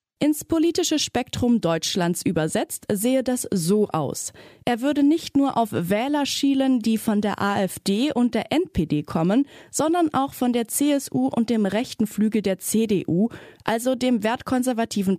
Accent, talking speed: German, 150 wpm